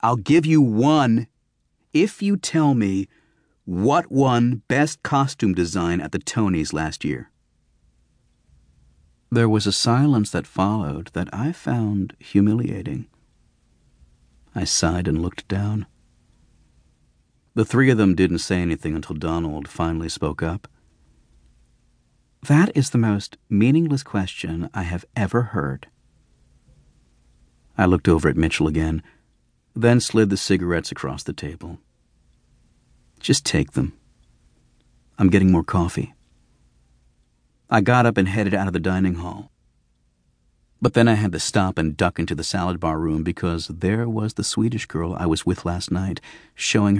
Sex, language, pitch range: male, English, 80-110 Hz